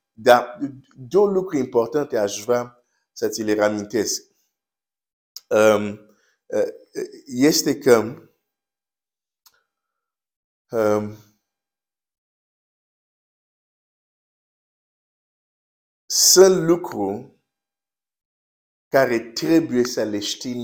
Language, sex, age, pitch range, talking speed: Romanian, male, 50-69, 115-170 Hz, 60 wpm